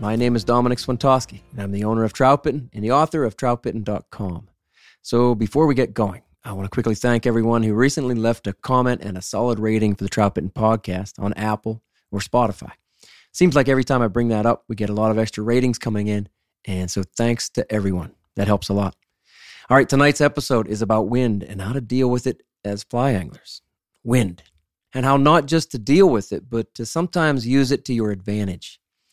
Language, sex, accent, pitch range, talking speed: English, male, American, 100-125 Hz, 215 wpm